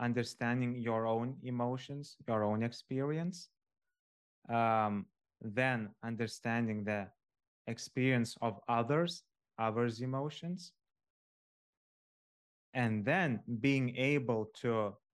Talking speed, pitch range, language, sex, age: 85 wpm, 110-120 Hz, English, male, 20-39